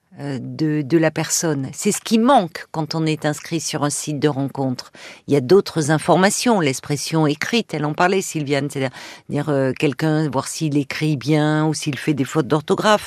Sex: female